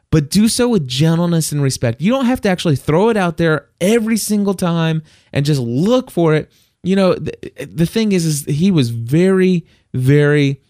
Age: 20-39